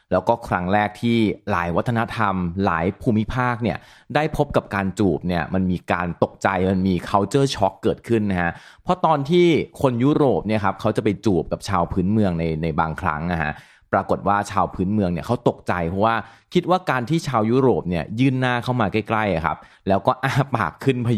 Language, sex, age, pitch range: Thai, male, 30-49, 95-125 Hz